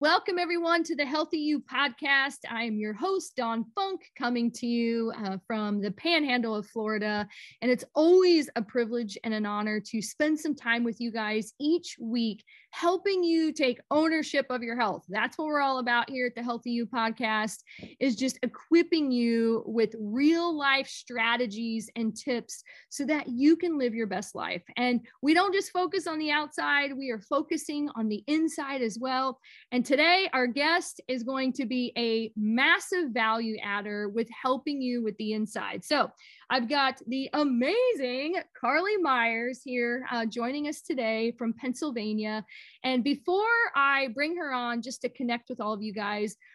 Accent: American